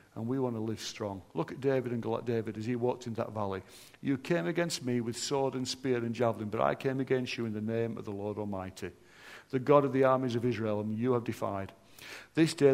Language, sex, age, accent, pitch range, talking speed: English, male, 50-69, British, 110-135 Hz, 255 wpm